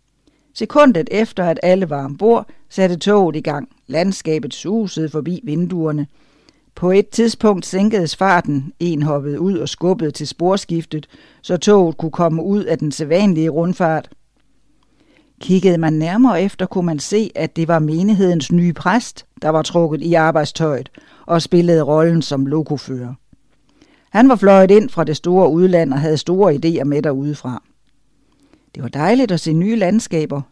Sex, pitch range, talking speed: female, 155-200 Hz, 155 wpm